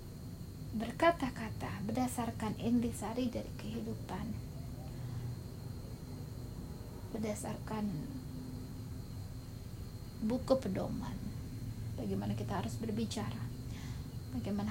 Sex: female